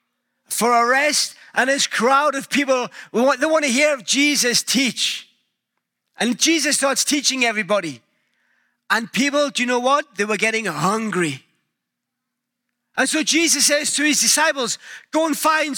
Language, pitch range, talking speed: English, 220-290 Hz, 150 wpm